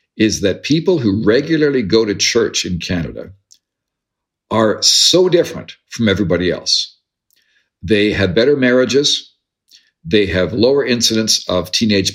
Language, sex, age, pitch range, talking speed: English, male, 50-69, 95-135 Hz, 130 wpm